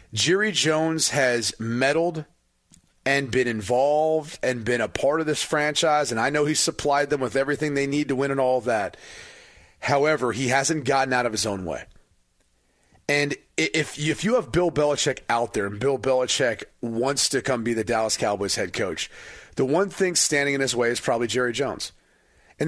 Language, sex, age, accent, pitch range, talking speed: English, male, 30-49, American, 125-155 Hz, 185 wpm